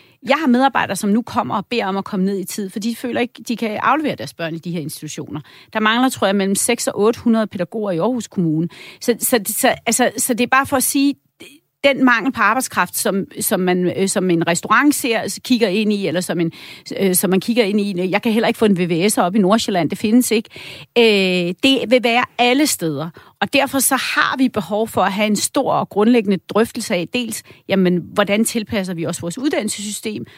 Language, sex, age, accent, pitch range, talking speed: Danish, female, 40-59, native, 185-250 Hz, 215 wpm